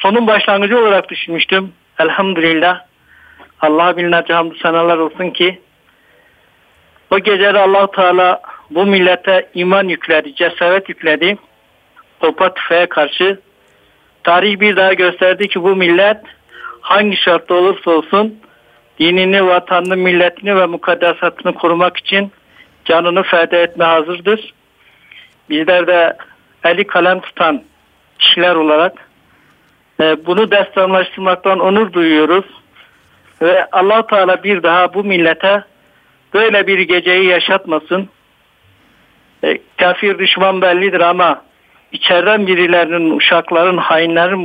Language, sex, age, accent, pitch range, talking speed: Turkish, male, 50-69, native, 170-195 Hz, 105 wpm